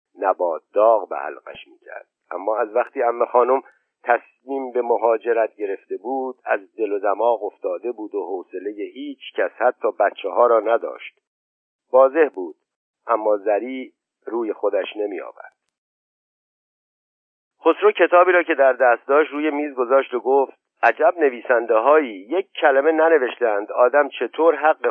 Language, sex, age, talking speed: Persian, male, 50-69, 145 wpm